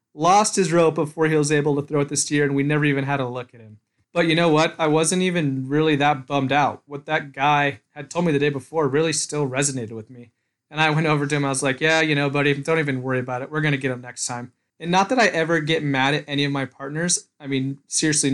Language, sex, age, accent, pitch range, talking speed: English, male, 30-49, American, 135-160 Hz, 280 wpm